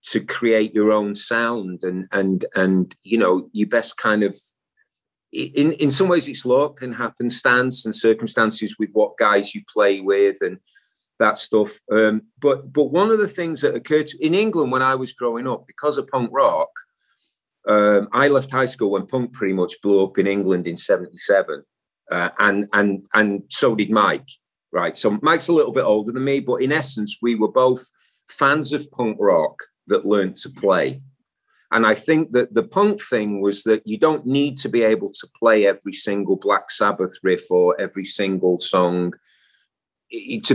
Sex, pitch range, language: male, 100-135 Hz, English